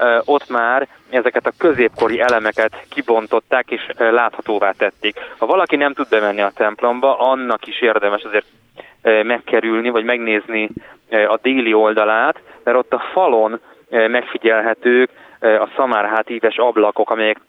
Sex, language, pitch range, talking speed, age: male, Hungarian, 110-125 Hz, 125 wpm, 20-39